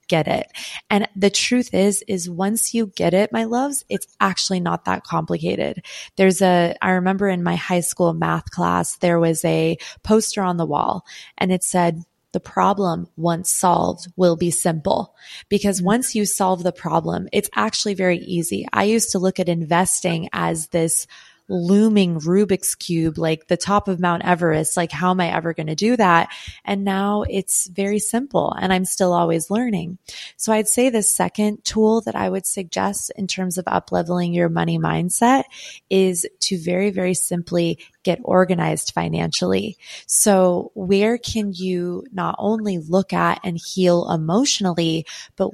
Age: 20-39